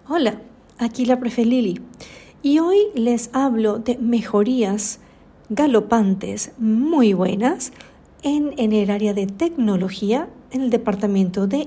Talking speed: 125 wpm